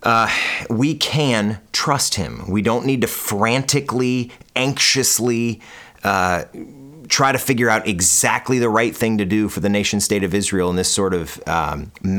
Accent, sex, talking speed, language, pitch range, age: American, male, 165 wpm, English, 100-125 Hz, 30-49